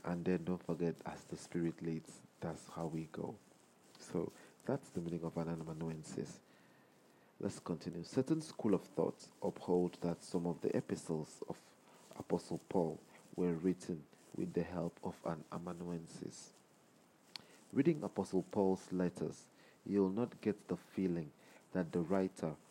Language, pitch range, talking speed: English, 85-95 Hz, 145 wpm